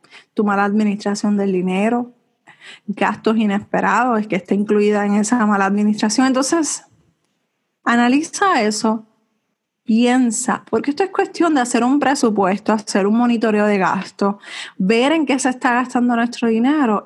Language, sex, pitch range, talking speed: Spanish, female, 205-255 Hz, 135 wpm